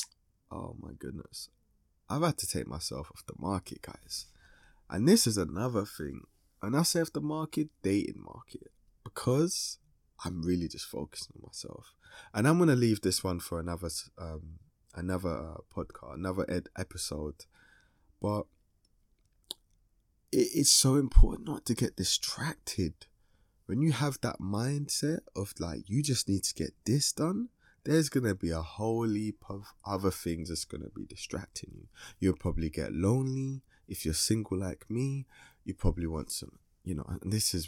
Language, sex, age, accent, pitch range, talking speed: English, male, 20-39, British, 85-130 Hz, 160 wpm